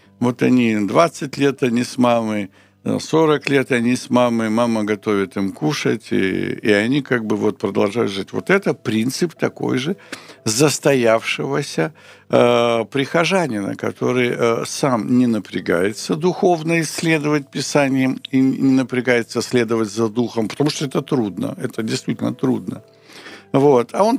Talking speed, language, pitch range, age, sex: 135 wpm, Ukrainian, 115-155 Hz, 60-79, male